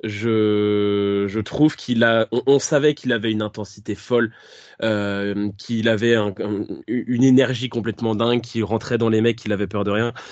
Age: 20-39